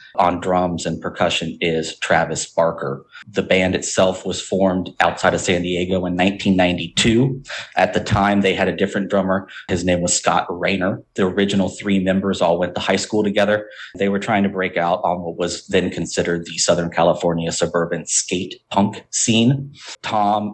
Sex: male